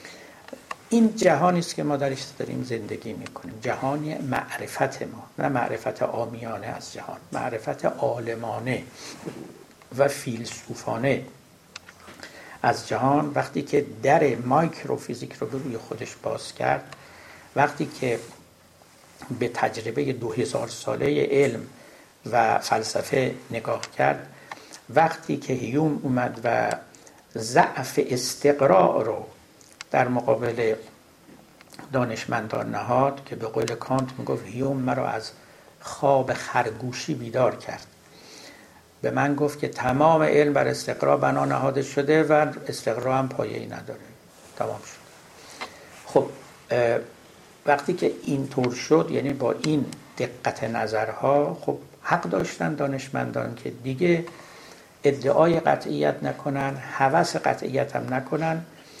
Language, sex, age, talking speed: Persian, male, 60-79, 110 wpm